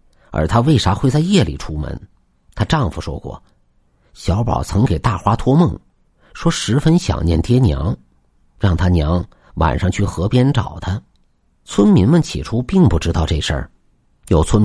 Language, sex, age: Chinese, male, 50-69